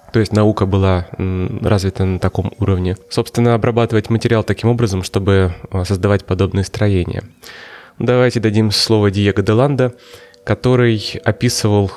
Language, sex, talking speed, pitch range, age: Russian, male, 125 wpm, 95-120 Hz, 20-39